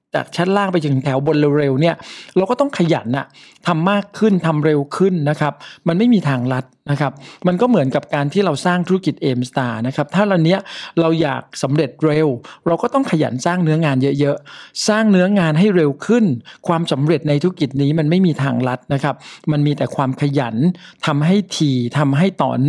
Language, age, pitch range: Thai, 60-79, 140-175 Hz